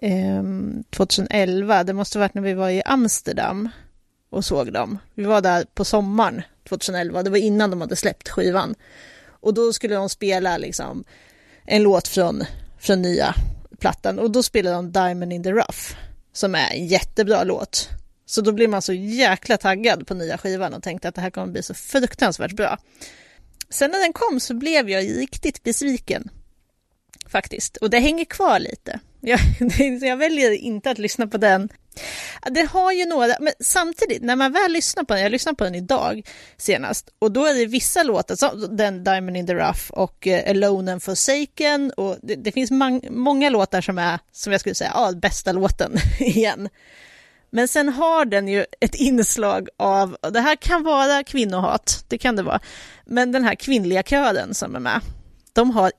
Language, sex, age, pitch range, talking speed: Swedish, female, 30-49, 190-260 Hz, 185 wpm